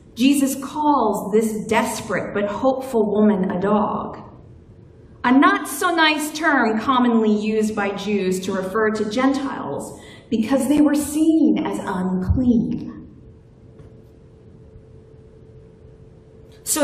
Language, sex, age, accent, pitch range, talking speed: English, female, 40-59, American, 230-315 Hz, 95 wpm